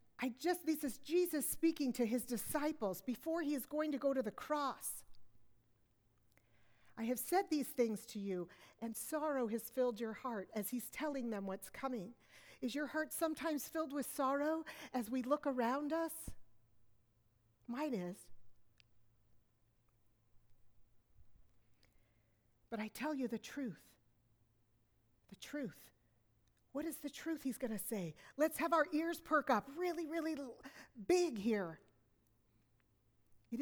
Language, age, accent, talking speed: English, 50-69, American, 140 wpm